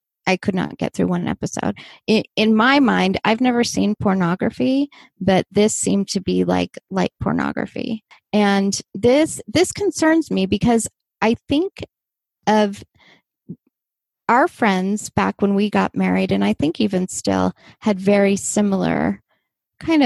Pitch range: 190-230 Hz